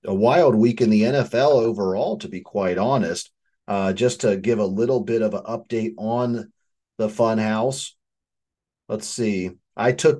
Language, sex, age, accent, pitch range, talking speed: English, male, 30-49, American, 110-150 Hz, 170 wpm